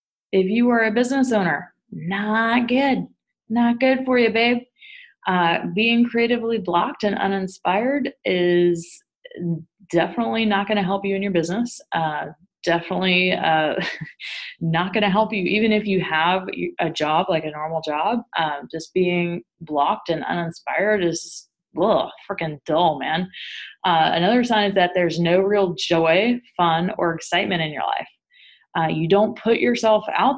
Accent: American